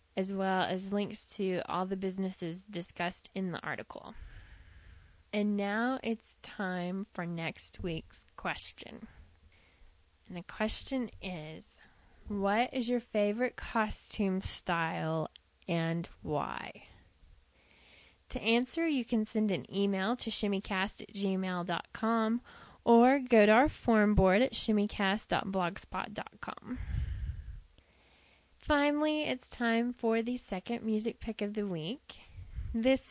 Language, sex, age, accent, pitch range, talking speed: English, female, 20-39, American, 175-230 Hz, 110 wpm